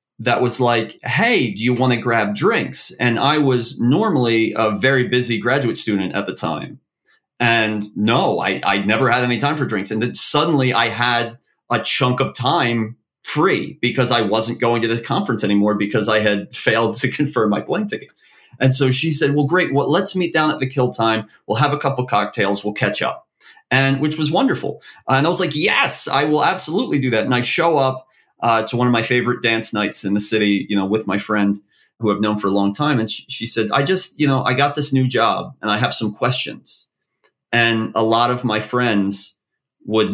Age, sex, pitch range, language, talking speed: 30-49, male, 110-135 Hz, English, 220 wpm